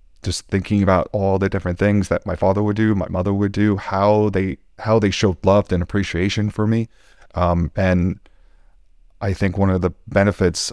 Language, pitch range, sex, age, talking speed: English, 85-100 Hz, male, 30-49, 190 wpm